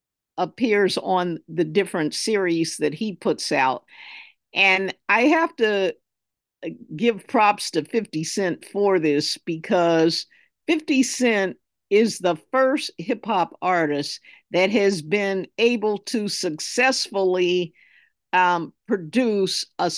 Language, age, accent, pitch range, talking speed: English, 50-69, American, 175-225 Hz, 115 wpm